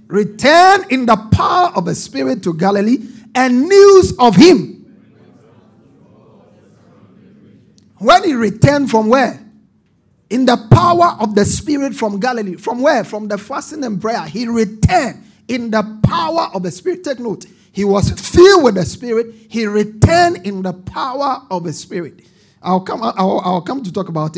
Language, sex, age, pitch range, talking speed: English, male, 50-69, 195-260 Hz, 155 wpm